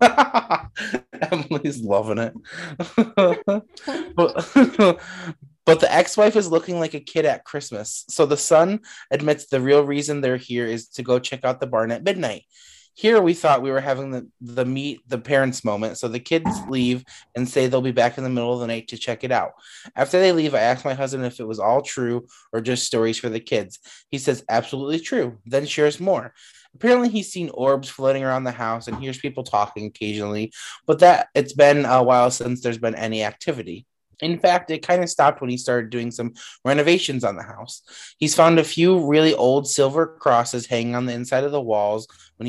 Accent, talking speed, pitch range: American, 200 wpm, 120-165 Hz